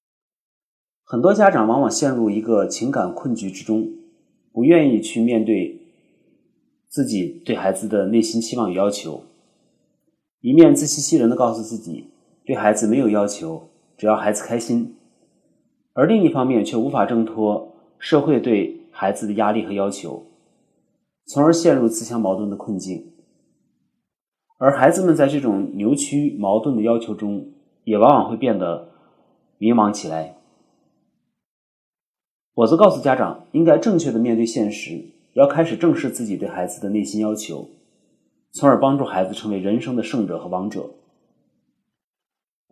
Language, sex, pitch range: Chinese, male, 105-145 Hz